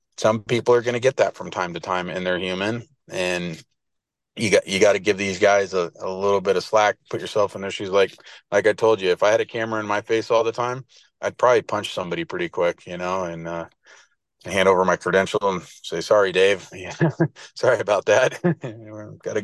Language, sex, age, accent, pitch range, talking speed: English, male, 30-49, American, 100-115 Hz, 225 wpm